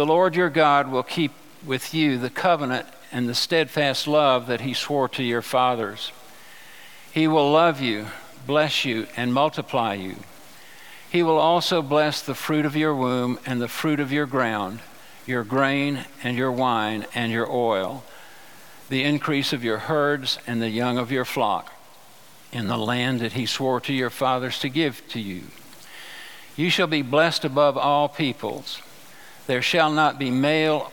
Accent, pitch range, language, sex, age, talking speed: American, 125-150 Hz, English, male, 60-79, 170 wpm